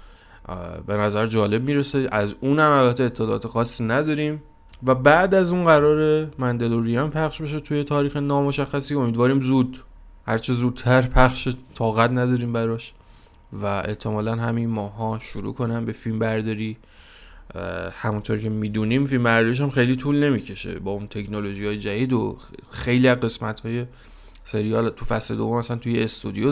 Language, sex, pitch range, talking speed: Persian, male, 105-130 Hz, 145 wpm